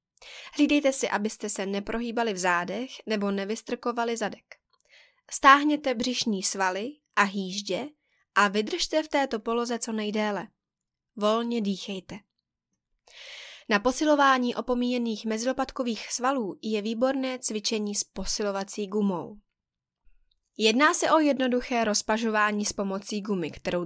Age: 20-39